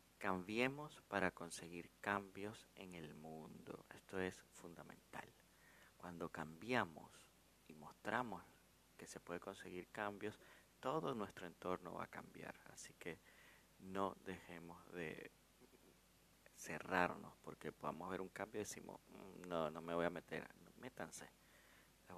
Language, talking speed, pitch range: Spanish, 125 wpm, 80-100 Hz